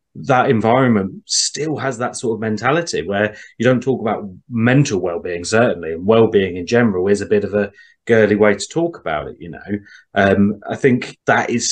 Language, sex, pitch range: English, male, 105-135 Hz